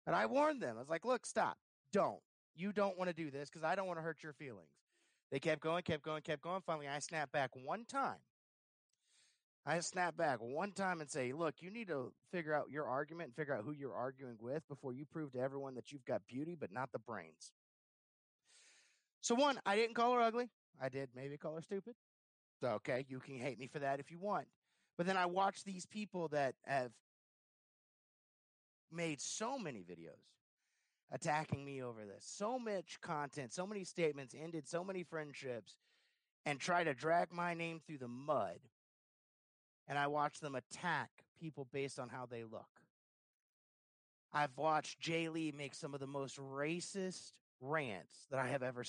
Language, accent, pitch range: English, American, 135-180 Hz